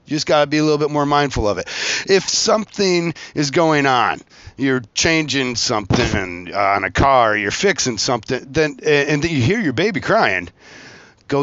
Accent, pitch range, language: American, 120-155 Hz, English